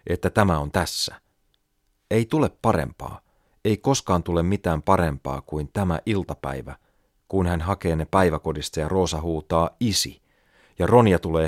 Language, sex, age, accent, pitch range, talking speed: Finnish, male, 40-59, native, 75-100 Hz, 140 wpm